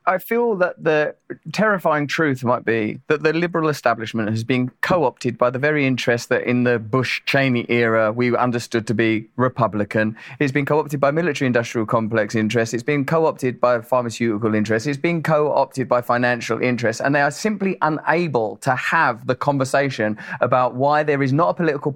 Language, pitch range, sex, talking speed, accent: English, 120-160 Hz, male, 175 wpm, British